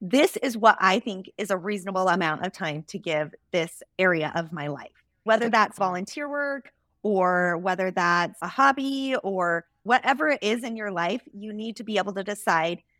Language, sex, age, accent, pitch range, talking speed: English, female, 20-39, American, 180-225 Hz, 190 wpm